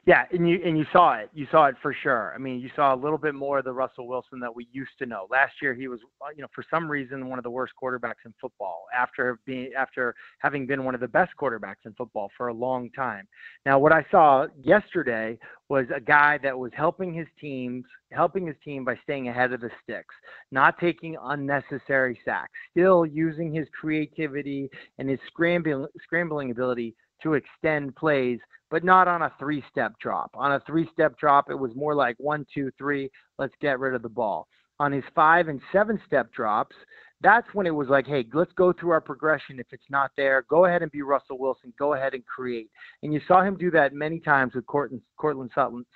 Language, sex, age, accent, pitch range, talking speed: English, male, 30-49, American, 130-165 Hz, 215 wpm